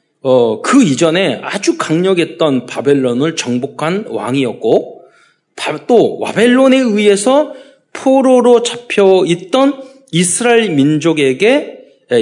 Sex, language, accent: male, Korean, native